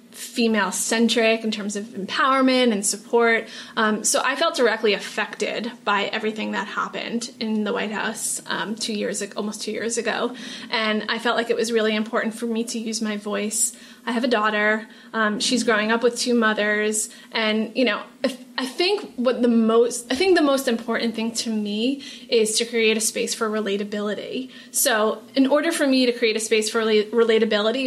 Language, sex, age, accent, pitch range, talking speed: English, female, 30-49, American, 215-240 Hz, 195 wpm